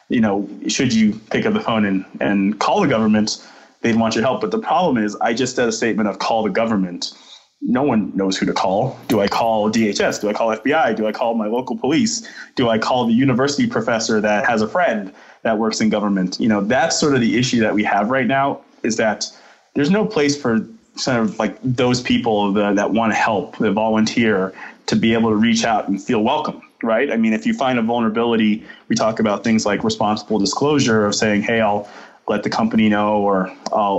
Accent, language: American, English